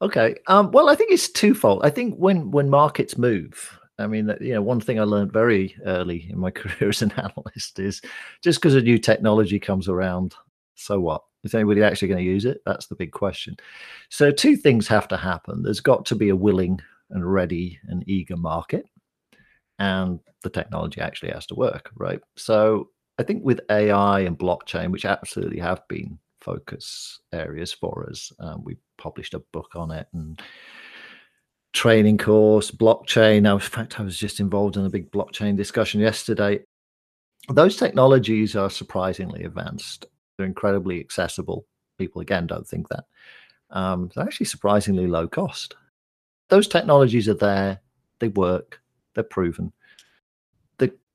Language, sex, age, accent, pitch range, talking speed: English, male, 50-69, British, 95-115 Hz, 165 wpm